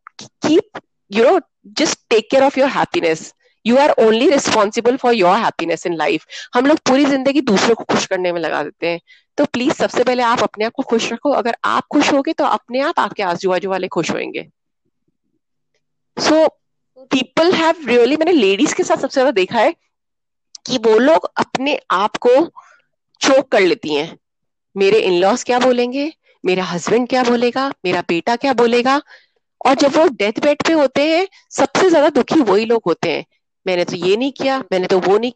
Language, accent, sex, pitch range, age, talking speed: Hindi, native, female, 225-305 Hz, 30-49, 185 wpm